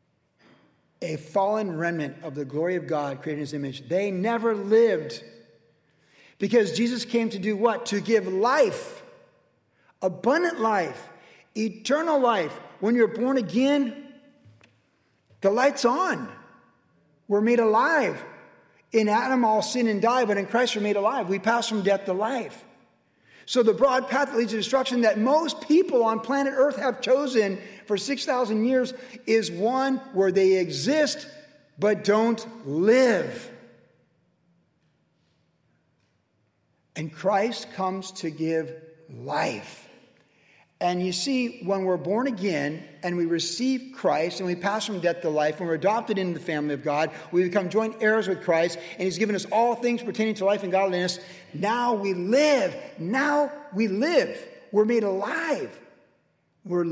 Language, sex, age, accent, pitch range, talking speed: English, male, 50-69, American, 175-240 Hz, 150 wpm